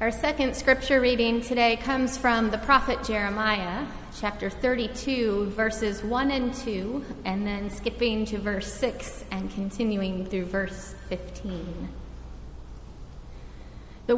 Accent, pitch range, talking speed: American, 200-255 Hz, 120 wpm